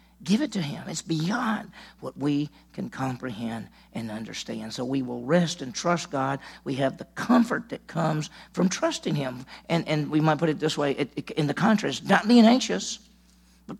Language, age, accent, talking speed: English, 50-69, American, 185 wpm